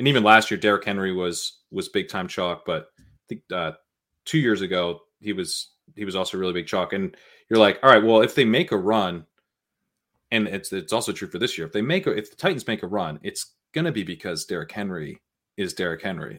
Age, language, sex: 30-49, English, male